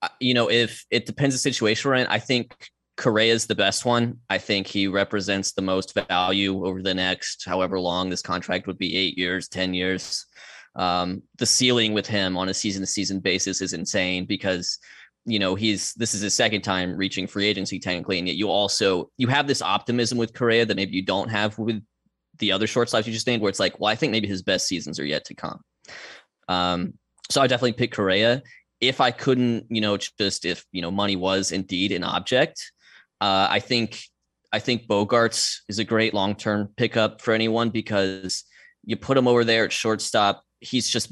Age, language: 20-39, English